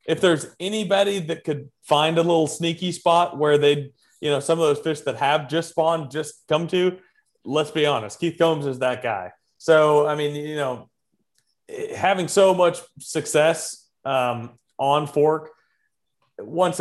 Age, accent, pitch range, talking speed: 30-49, American, 140-170 Hz, 165 wpm